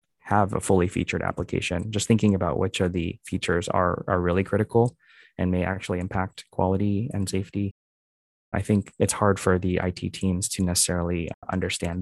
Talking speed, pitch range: 170 wpm, 90-105 Hz